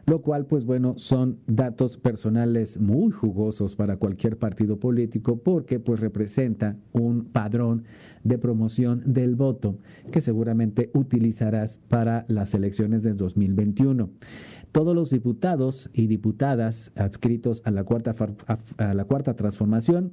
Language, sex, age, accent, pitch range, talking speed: Spanish, male, 50-69, Mexican, 110-130 Hz, 120 wpm